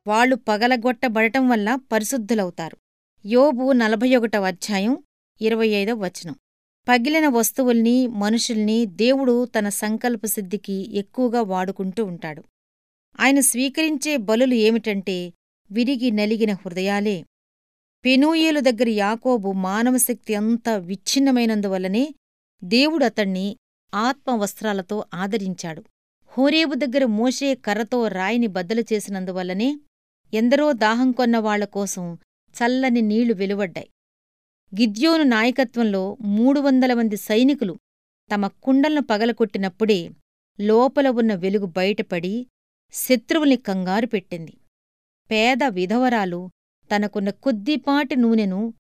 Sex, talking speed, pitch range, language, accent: female, 85 wpm, 200-250 Hz, Telugu, native